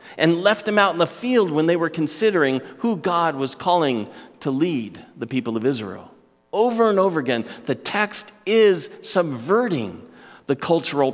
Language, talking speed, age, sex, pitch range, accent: English, 165 wpm, 50-69, male, 120-185 Hz, American